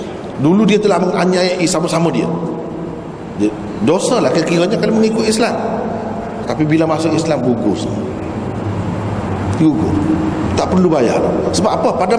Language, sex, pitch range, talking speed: Malay, male, 165-225 Hz, 130 wpm